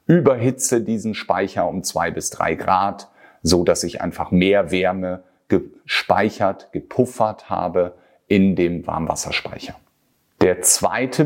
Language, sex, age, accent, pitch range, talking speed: German, male, 40-59, German, 90-115 Hz, 115 wpm